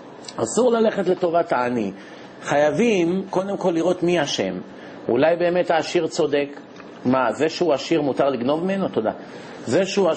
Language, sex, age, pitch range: Hebrew, male, 50-69, 140-180 Hz